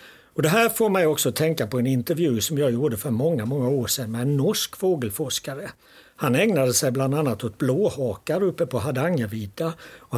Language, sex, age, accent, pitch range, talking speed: Swedish, male, 60-79, native, 120-170 Hz, 195 wpm